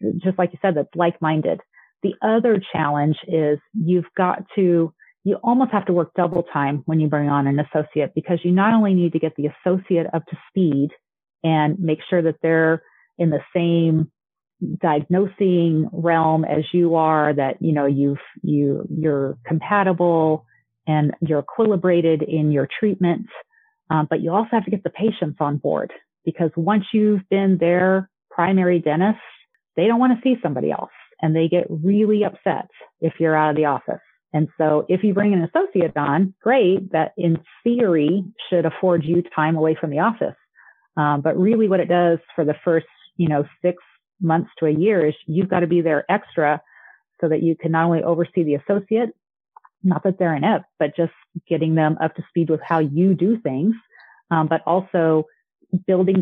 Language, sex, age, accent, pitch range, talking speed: English, female, 30-49, American, 155-190 Hz, 185 wpm